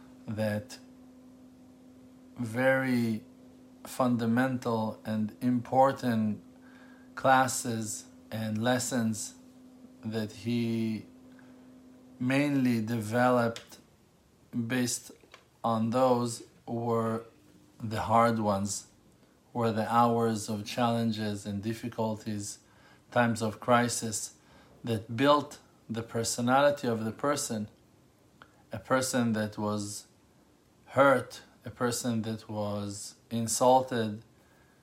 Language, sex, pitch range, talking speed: English, male, 110-130 Hz, 80 wpm